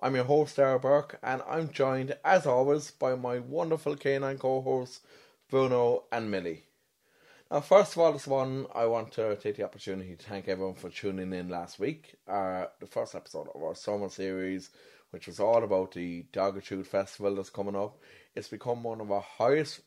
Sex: male